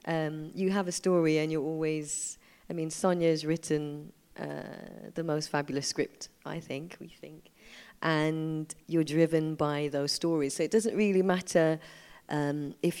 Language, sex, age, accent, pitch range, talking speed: English, female, 30-49, British, 150-175 Hz, 155 wpm